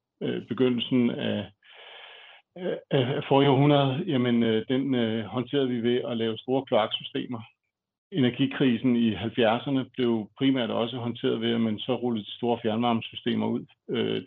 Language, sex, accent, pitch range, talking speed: Danish, male, native, 110-130 Hz, 140 wpm